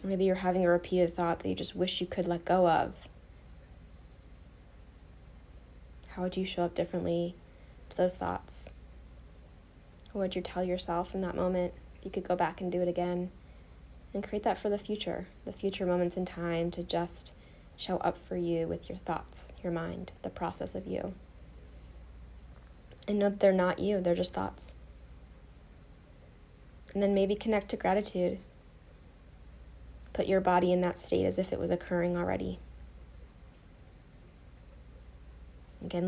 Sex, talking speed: female, 155 wpm